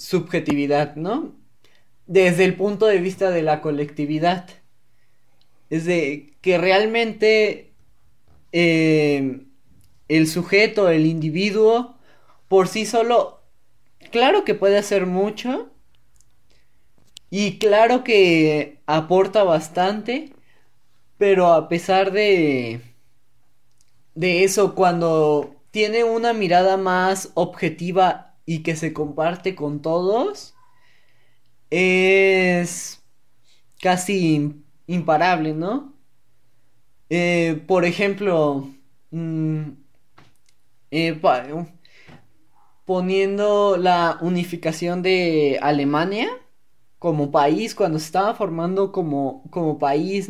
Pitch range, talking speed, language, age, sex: 155-200 Hz, 90 wpm, Spanish, 20-39, male